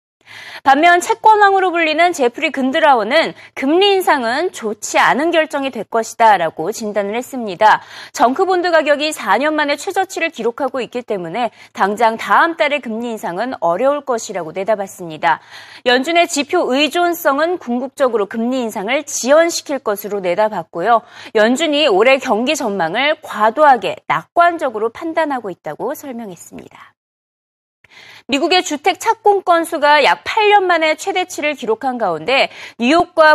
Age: 30-49